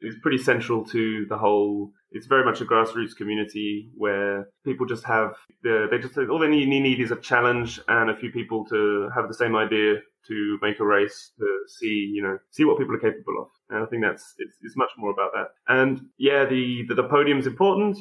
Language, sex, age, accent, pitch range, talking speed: English, male, 20-39, British, 110-135 Hz, 220 wpm